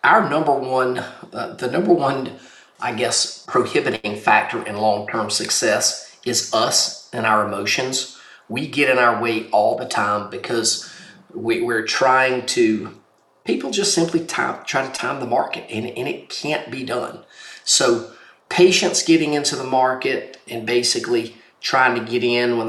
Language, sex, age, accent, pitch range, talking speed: English, male, 40-59, American, 115-145 Hz, 160 wpm